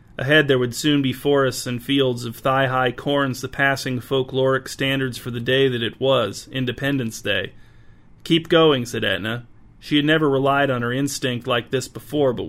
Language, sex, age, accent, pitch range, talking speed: English, male, 40-59, American, 120-140 Hz, 185 wpm